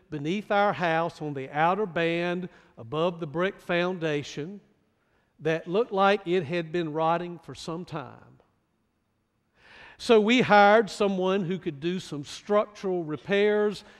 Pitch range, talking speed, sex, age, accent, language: 165-205 Hz, 135 wpm, male, 50-69, American, English